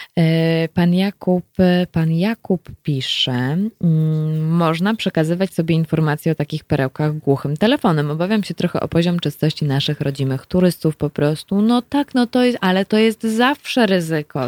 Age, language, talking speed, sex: 20-39, Polish, 145 wpm, female